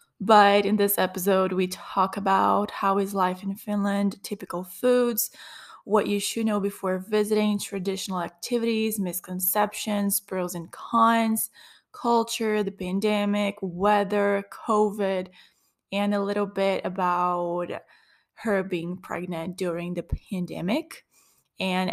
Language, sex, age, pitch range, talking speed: English, female, 20-39, 180-210 Hz, 120 wpm